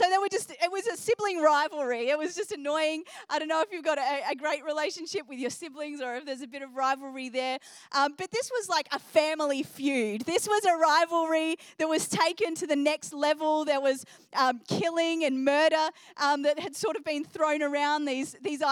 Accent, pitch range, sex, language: Australian, 275-320 Hz, female, English